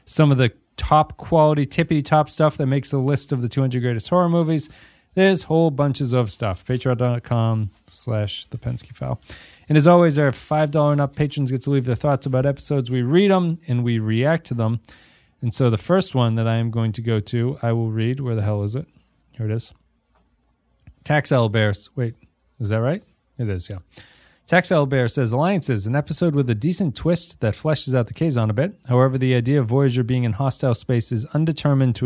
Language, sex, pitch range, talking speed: English, male, 115-145 Hz, 210 wpm